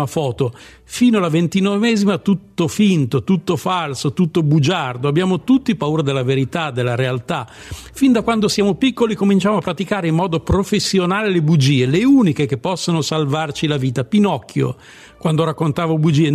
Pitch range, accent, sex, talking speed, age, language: 145-195 Hz, native, male, 150 wpm, 50-69, Italian